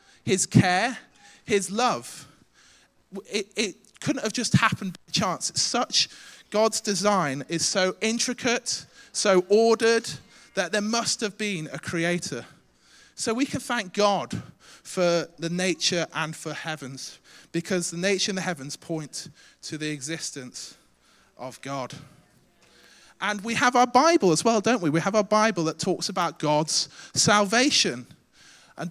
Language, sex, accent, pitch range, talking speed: English, male, British, 160-225 Hz, 145 wpm